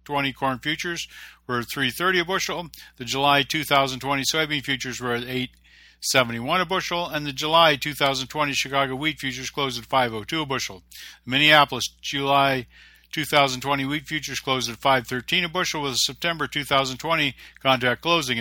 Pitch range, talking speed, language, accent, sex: 125-150 Hz, 150 wpm, English, American, male